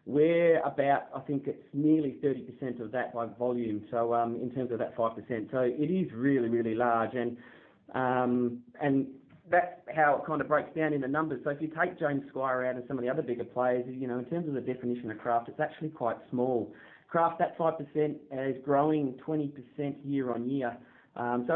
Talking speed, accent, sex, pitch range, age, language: 210 wpm, Australian, male, 120-145 Hz, 20-39, English